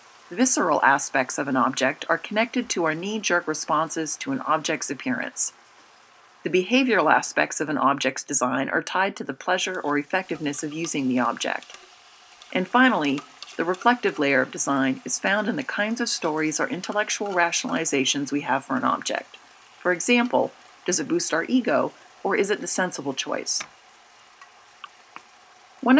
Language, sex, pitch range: English, female, 155-220 Hz